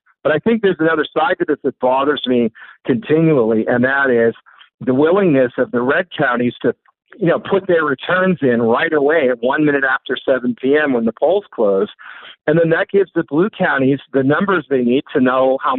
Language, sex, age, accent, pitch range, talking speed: English, male, 50-69, American, 120-150 Hz, 205 wpm